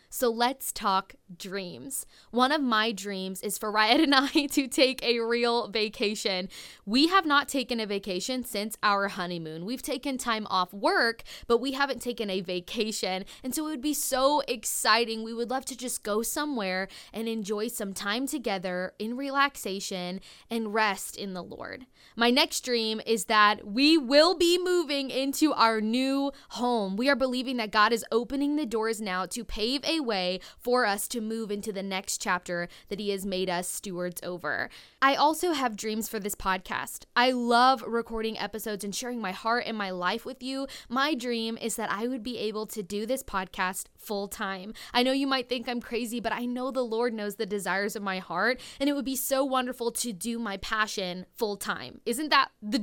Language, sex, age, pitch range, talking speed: English, female, 20-39, 205-260 Hz, 195 wpm